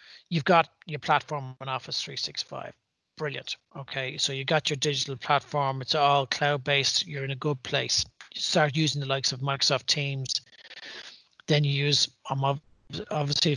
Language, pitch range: English, 135-160 Hz